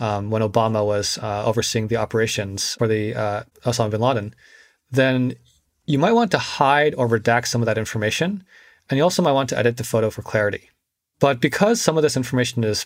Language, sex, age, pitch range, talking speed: English, male, 30-49, 110-135 Hz, 205 wpm